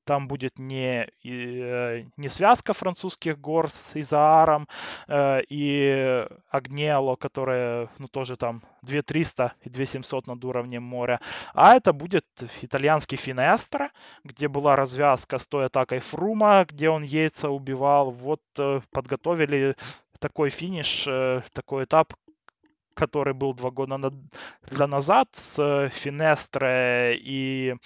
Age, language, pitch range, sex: 20-39, Russian, 130-155 Hz, male